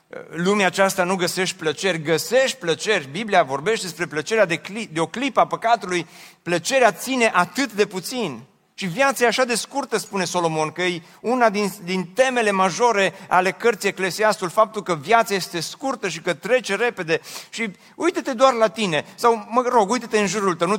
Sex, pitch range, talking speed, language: male, 185-230 Hz, 180 wpm, Romanian